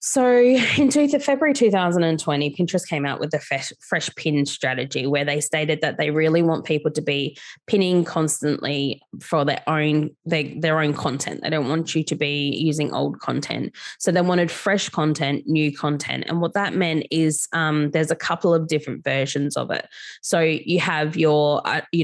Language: English